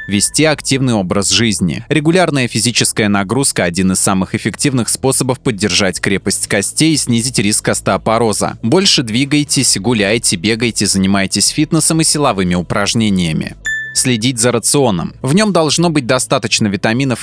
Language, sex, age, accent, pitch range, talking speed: Russian, male, 20-39, native, 105-140 Hz, 130 wpm